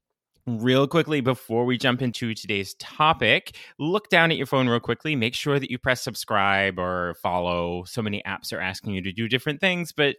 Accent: American